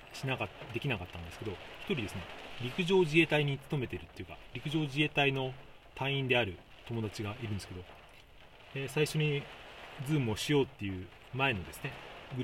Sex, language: male, Japanese